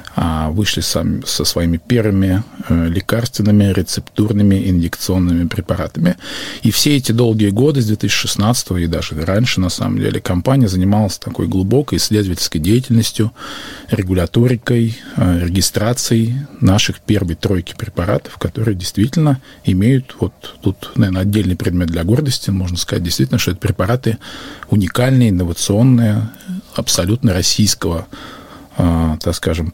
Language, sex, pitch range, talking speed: Russian, male, 90-115 Hz, 115 wpm